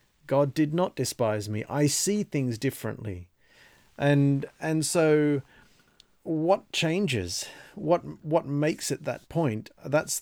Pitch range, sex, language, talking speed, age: 125-155 Hz, male, English, 125 wpm, 40-59